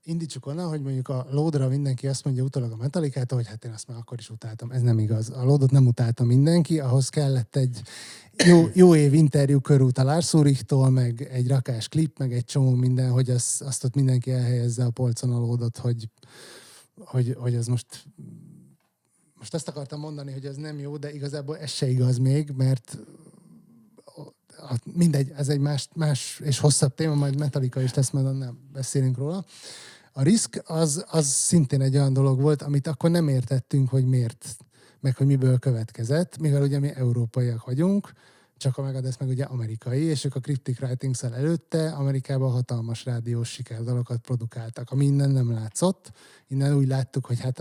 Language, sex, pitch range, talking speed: Hungarian, male, 125-145 Hz, 180 wpm